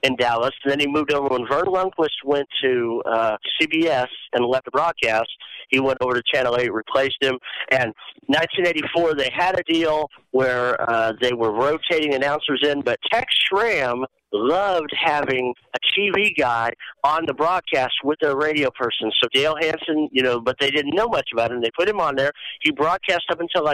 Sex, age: male, 50-69